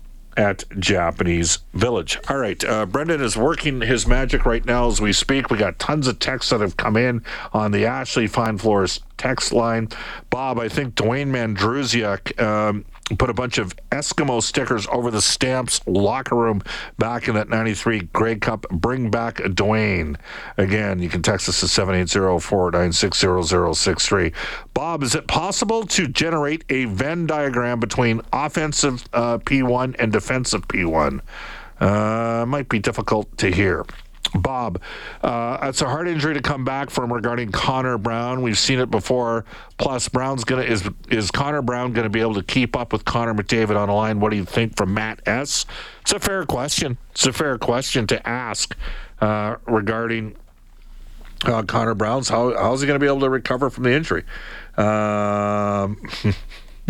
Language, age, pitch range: English, 50-69, 105-130 Hz